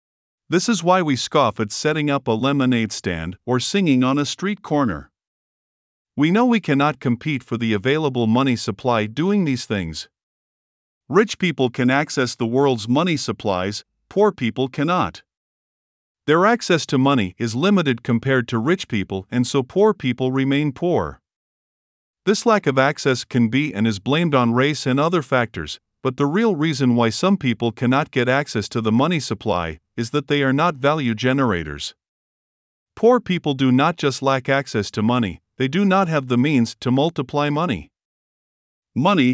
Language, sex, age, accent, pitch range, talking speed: English, male, 50-69, American, 120-155 Hz, 170 wpm